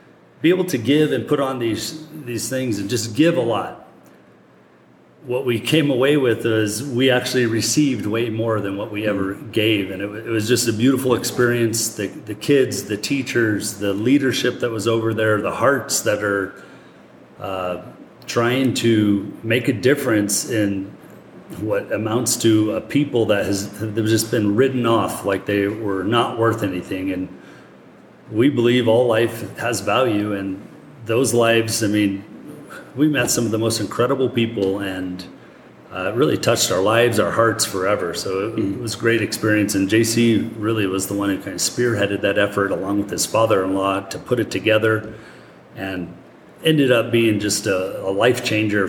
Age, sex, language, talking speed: 40-59, male, English, 175 wpm